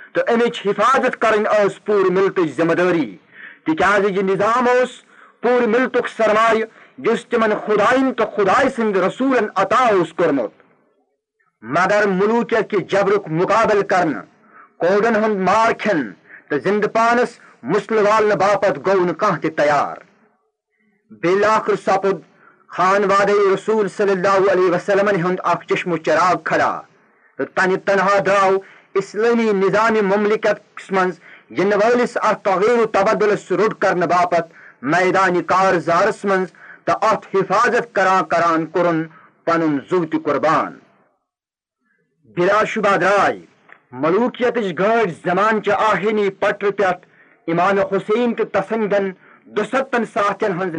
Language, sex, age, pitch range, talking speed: Urdu, male, 40-59, 185-220 Hz, 115 wpm